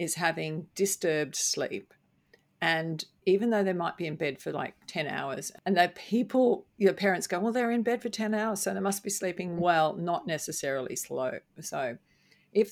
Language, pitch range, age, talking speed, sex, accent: English, 155-190 Hz, 50-69, 190 wpm, female, Australian